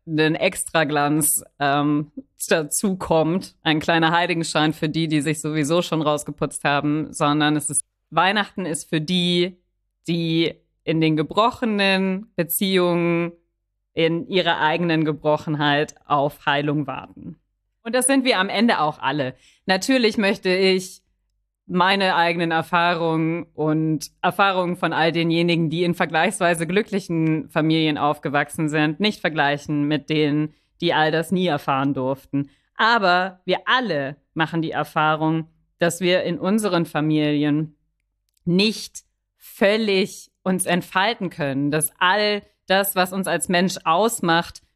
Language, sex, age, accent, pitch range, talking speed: German, female, 30-49, German, 150-185 Hz, 125 wpm